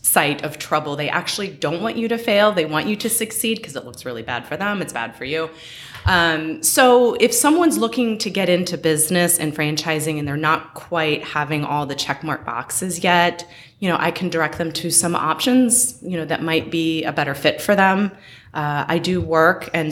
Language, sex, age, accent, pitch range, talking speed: English, female, 20-39, American, 150-185 Hz, 215 wpm